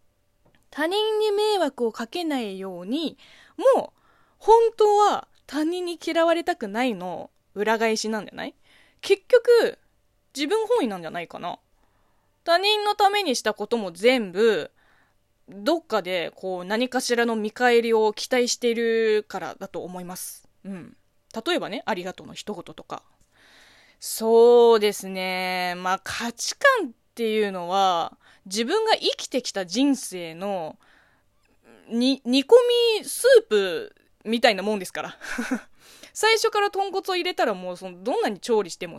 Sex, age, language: female, 20-39, Japanese